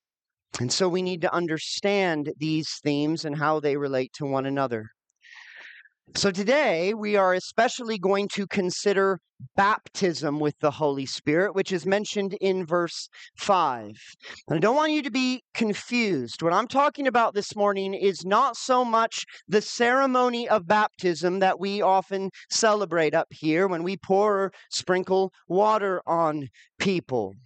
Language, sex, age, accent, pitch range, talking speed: English, male, 40-59, American, 155-220 Hz, 155 wpm